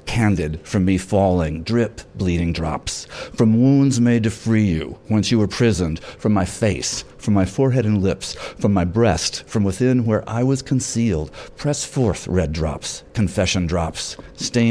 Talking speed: 165 wpm